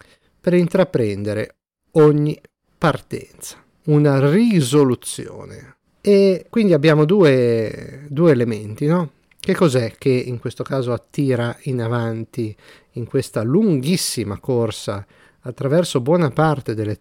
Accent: native